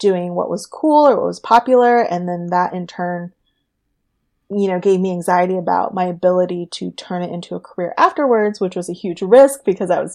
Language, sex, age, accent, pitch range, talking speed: English, female, 20-39, American, 180-230 Hz, 215 wpm